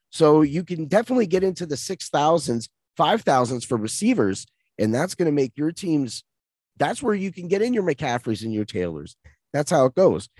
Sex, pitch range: male, 120-175 Hz